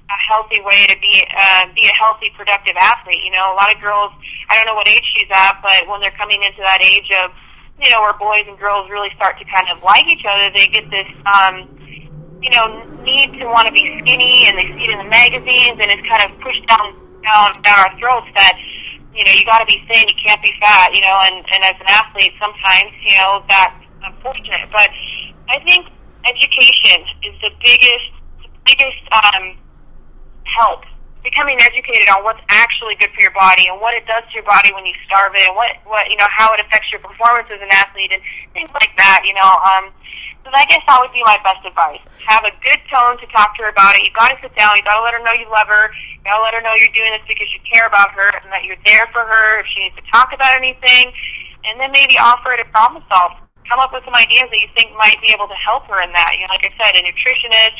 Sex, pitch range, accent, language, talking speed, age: female, 195-230 Hz, American, English, 245 wpm, 30-49